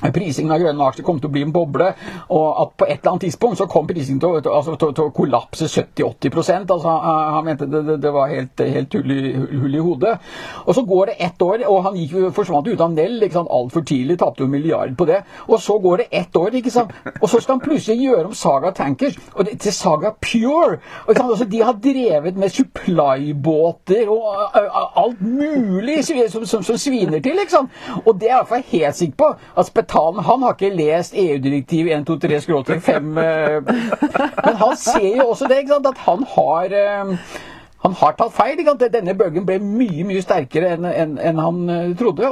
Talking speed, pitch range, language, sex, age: 185 wpm, 155-235 Hz, English, male, 60-79